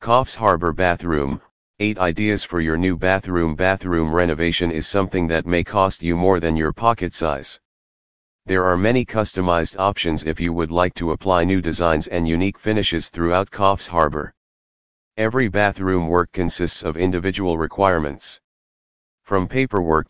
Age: 40-59